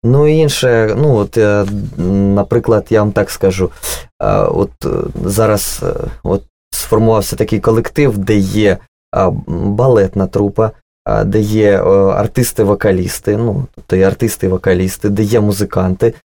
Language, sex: Russian, male